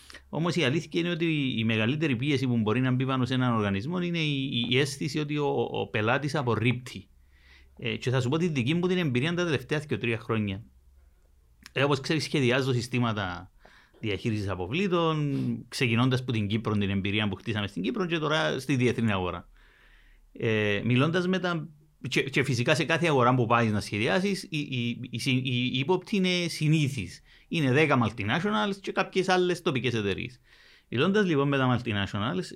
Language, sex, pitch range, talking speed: Greek, male, 110-150 Hz, 170 wpm